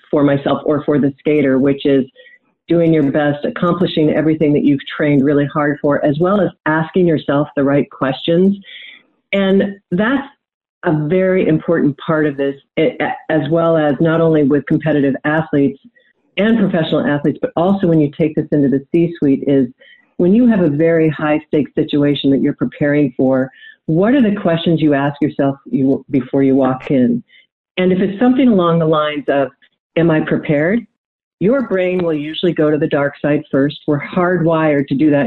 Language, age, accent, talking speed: English, 50-69, American, 180 wpm